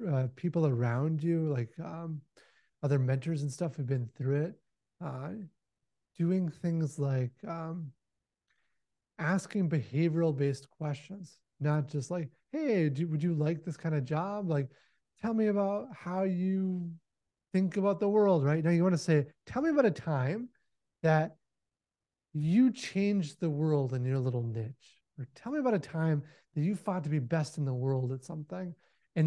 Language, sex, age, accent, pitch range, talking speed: English, male, 30-49, American, 145-185 Hz, 165 wpm